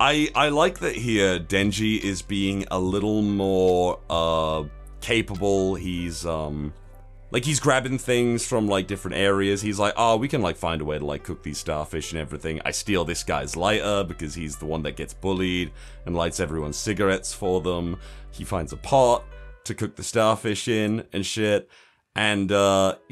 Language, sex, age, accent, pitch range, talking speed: English, male, 30-49, British, 90-110 Hz, 180 wpm